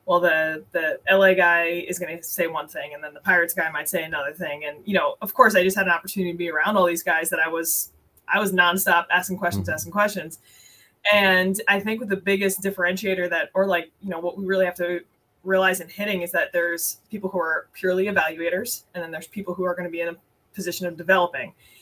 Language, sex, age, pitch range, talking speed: English, female, 20-39, 170-190 Hz, 240 wpm